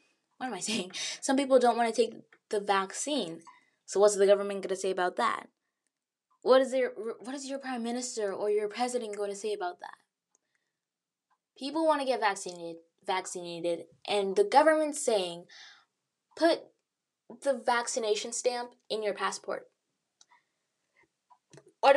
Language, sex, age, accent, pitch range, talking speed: English, female, 10-29, American, 185-275 Hz, 145 wpm